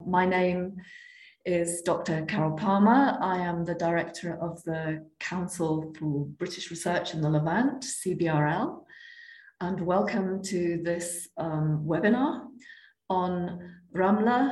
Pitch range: 170-235 Hz